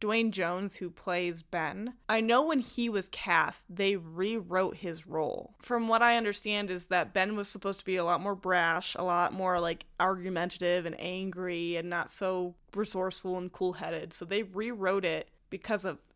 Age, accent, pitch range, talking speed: 10-29, American, 180-210 Hz, 180 wpm